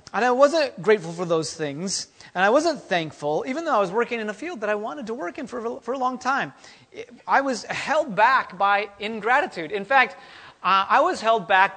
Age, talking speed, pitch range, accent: 30-49, 220 wpm, 180-240 Hz, American